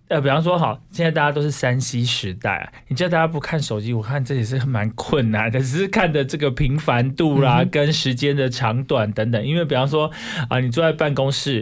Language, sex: Chinese, male